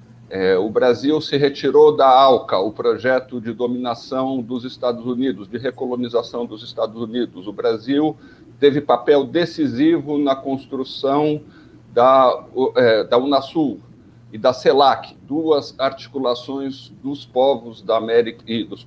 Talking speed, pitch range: 125 wpm, 120-150 Hz